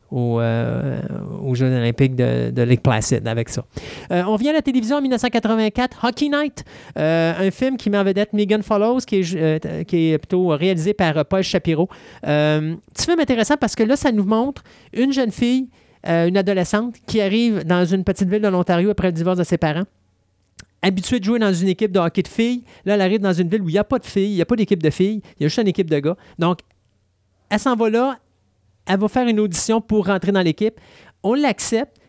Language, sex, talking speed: French, male, 235 wpm